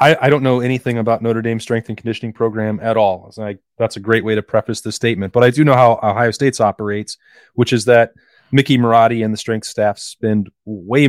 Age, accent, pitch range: 30-49, American, 110-125 Hz